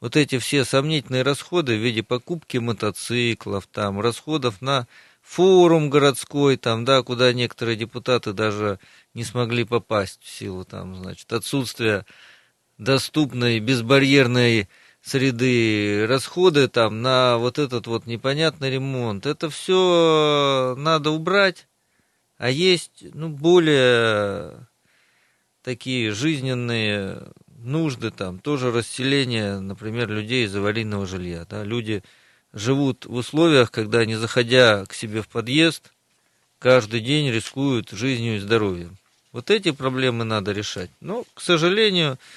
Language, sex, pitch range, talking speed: Russian, male, 110-140 Hz, 115 wpm